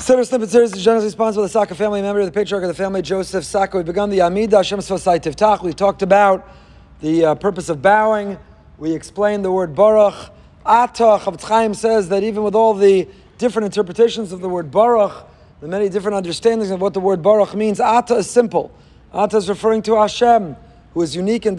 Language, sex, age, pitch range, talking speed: English, male, 30-49, 195-230 Hz, 195 wpm